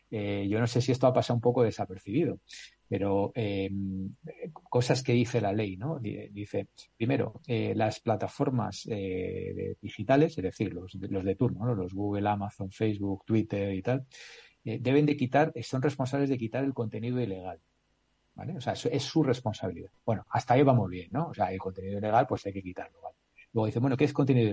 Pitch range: 105-135 Hz